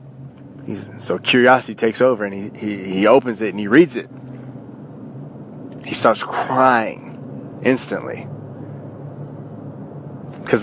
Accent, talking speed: American, 115 wpm